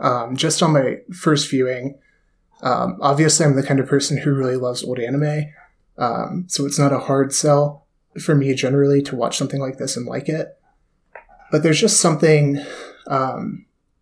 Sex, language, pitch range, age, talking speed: male, English, 125-155 Hz, 20-39, 175 wpm